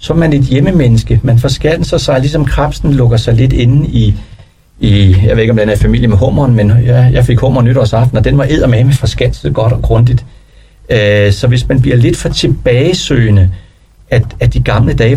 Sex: male